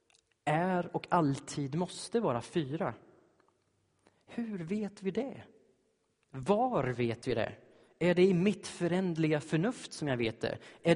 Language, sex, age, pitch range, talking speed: Swedish, male, 30-49, 120-175 Hz, 135 wpm